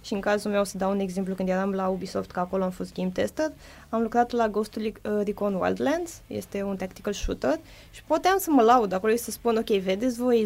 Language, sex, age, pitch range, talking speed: Romanian, female, 20-39, 195-265 Hz, 240 wpm